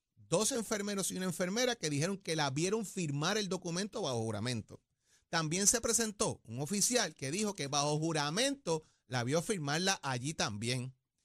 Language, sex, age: Spanish, male, 30-49